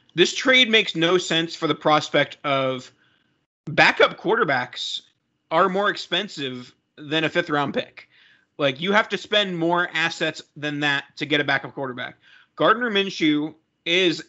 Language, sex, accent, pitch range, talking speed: English, male, American, 145-170 Hz, 145 wpm